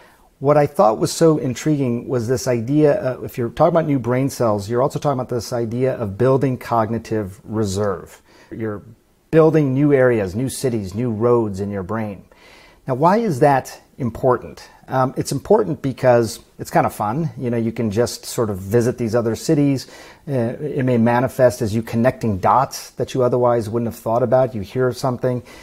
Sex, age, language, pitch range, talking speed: male, 40-59, English, 115-145 Hz, 185 wpm